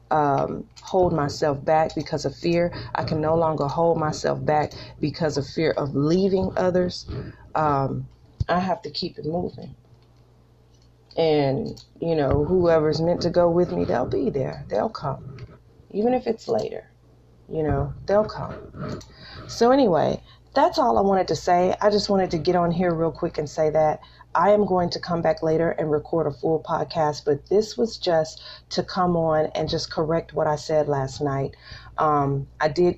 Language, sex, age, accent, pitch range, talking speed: English, female, 40-59, American, 145-175 Hz, 180 wpm